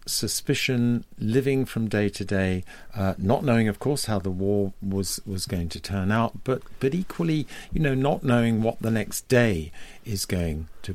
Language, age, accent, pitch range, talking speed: English, 50-69, British, 100-145 Hz, 185 wpm